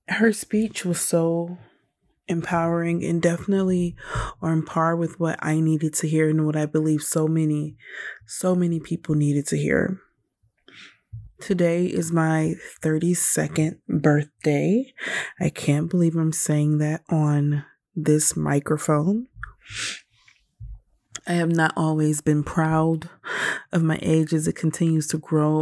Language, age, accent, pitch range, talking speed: English, 20-39, American, 155-185 Hz, 130 wpm